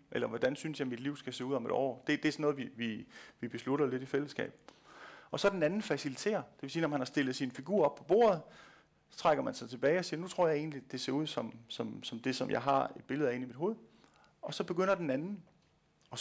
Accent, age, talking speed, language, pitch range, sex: native, 40-59, 280 wpm, Danish, 130-170 Hz, male